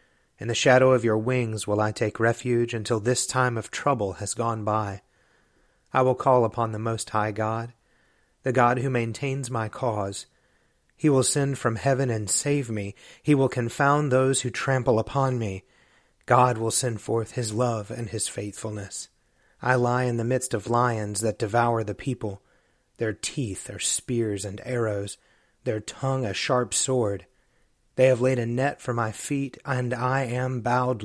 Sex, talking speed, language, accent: male, 175 wpm, English, American